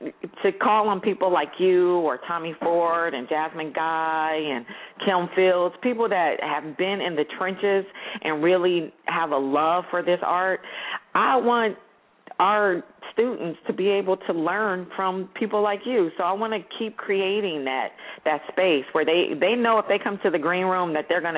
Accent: American